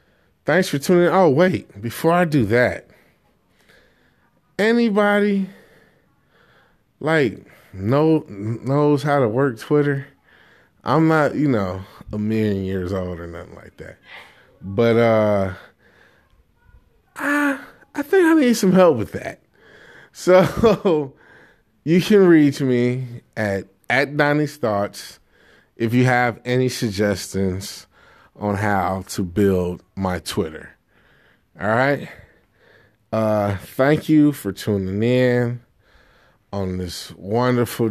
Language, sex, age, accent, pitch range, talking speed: English, male, 20-39, American, 95-145 Hz, 115 wpm